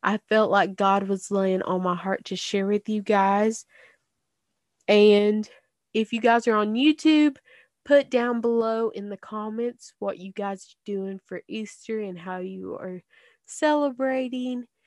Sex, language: female, English